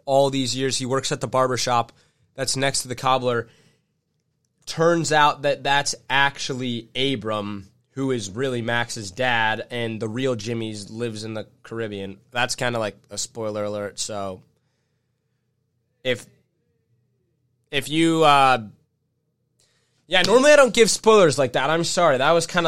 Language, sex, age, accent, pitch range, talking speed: English, male, 20-39, American, 120-155 Hz, 155 wpm